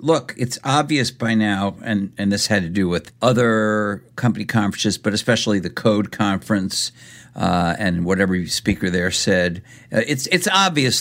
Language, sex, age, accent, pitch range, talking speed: English, male, 60-79, American, 95-120 Hz, 165 wpm